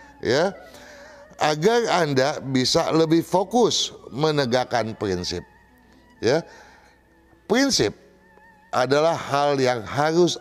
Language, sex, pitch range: Indonesian, male, 120-170 Hz